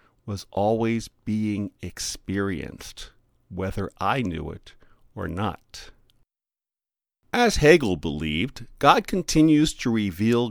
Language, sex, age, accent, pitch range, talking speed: English, male, 50-69, American, 95-130 Hz, 95 wpm